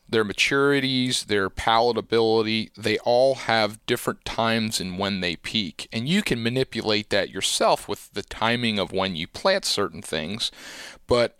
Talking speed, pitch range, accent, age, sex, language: 145 wpm, 105-125 Hz, American, 30-49, male, English